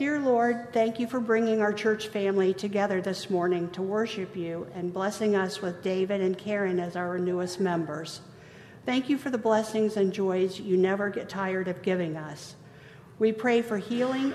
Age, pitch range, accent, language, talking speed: 50-69, 180-220 Hz, American, English, 185 wpm